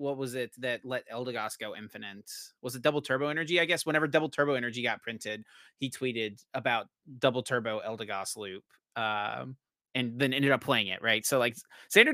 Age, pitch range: 30-49, 115-165 Hz